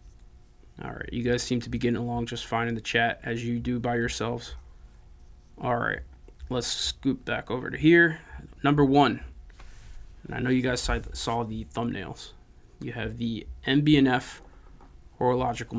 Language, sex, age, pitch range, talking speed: English, male, 20-39, 115-135 Hz, 160 wpm